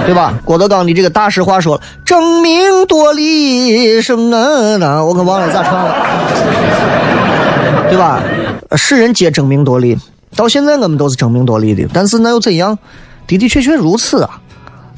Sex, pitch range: male, 150-225 Hz